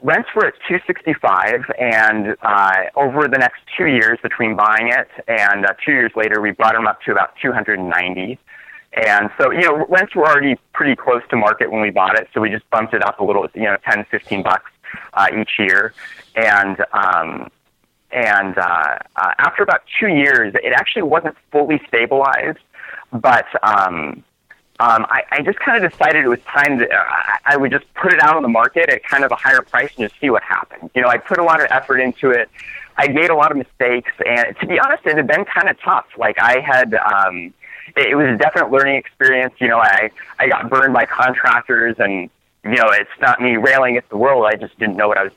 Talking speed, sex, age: 220 wpm, male, 20-39